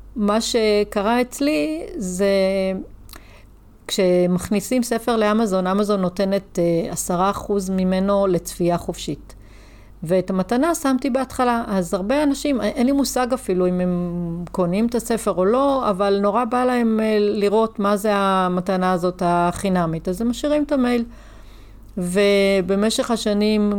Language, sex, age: Hebrew, female, 40-59